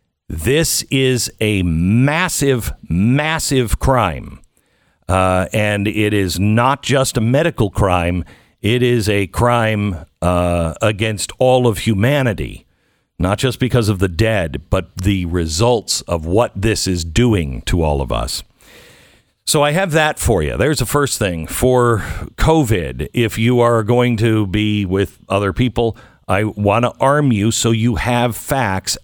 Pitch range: 90-120 Hz